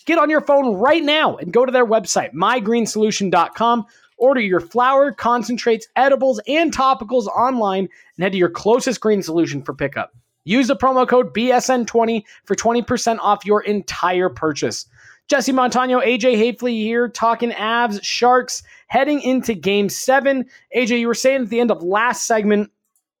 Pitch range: 180-245 Hz